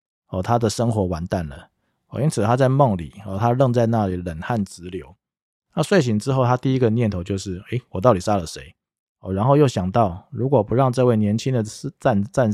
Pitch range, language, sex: 95-125 Hz, Chinese, male